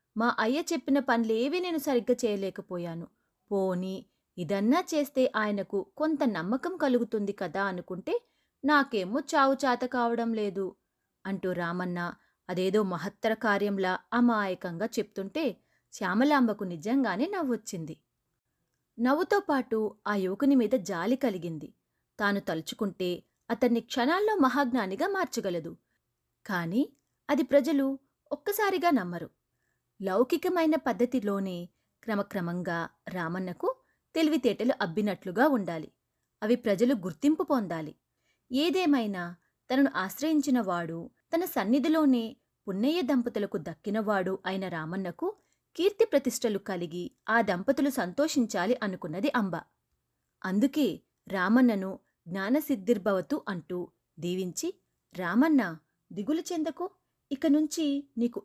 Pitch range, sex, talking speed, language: 190-280 Hz, female, 90 wpm, Telugu